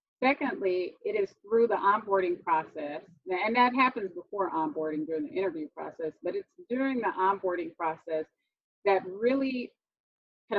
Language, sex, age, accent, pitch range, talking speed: English, female, 30-49, American, 185-300 Hz, 140 wpm